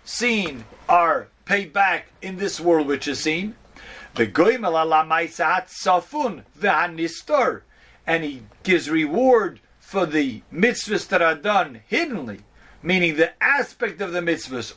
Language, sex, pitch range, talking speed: English, male, 165-225 Hz, 115 wpm